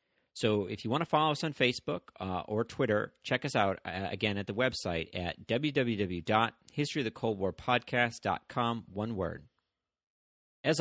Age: 40-59